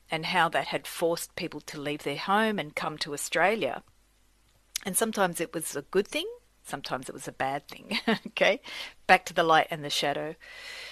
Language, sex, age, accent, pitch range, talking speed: English, female, 40-59, Australian, 155-200 Hz, 190 wpm